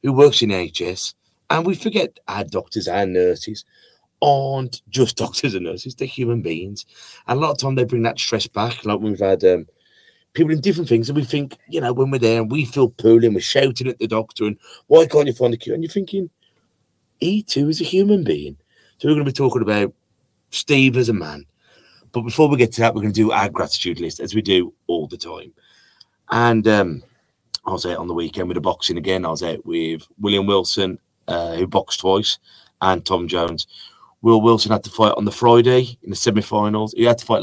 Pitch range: 100-130 Hz